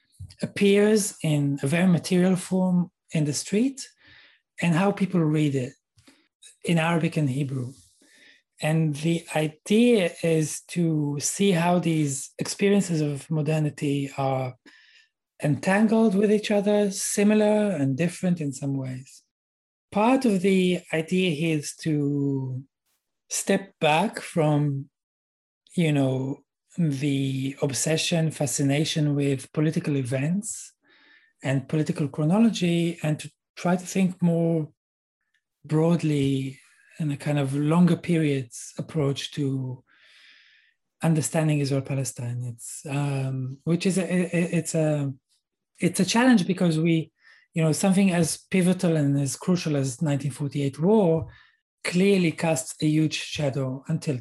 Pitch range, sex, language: 140-180 Hz, male, English